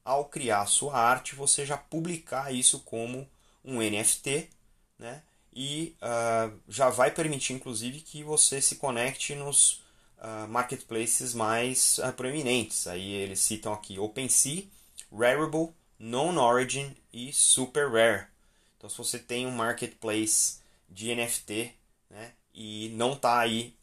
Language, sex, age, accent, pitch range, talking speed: Portuguese, male, 20-39, Brazilian, 105-125 Hz, 130 wpm